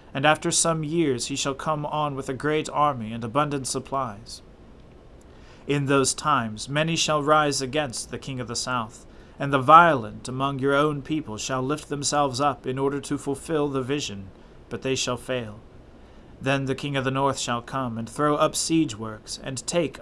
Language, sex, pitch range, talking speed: English, male, 120-150 Hz, 190 wpm